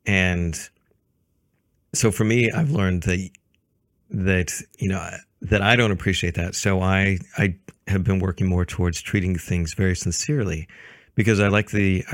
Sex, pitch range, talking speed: male, 90-105 Hz, 155 wpm